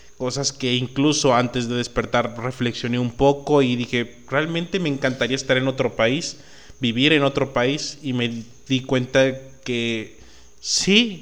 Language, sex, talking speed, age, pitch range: Spanish, male, 150 wpm, 30-49, 120-135 Hz